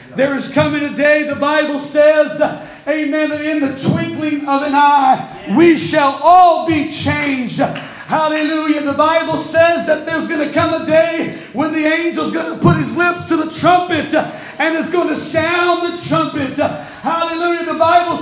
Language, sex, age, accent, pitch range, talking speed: English, male, 40-59, American, 295-330 Hz, 175 wpm